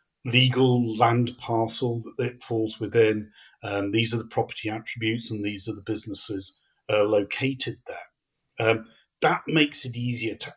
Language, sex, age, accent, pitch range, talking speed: English, male, 40-59, British, 105-130 Hz, 155 wpm